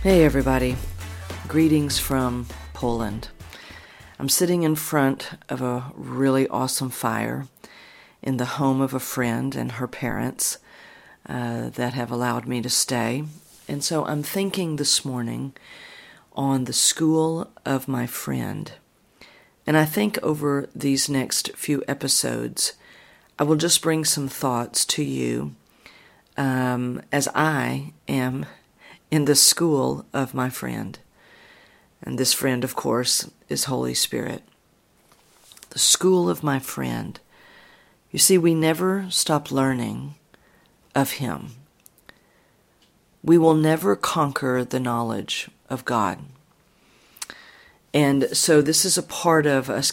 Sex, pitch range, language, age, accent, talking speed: female, 120-150 Hz, English, 50-69, American, 125 wpm